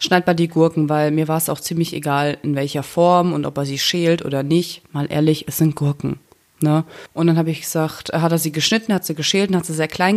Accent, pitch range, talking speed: German, 155-190 Hz, 260 wpm